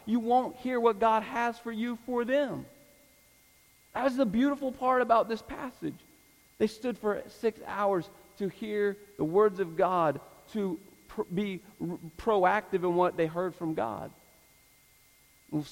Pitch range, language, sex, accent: 160-195 Hz, English, male, American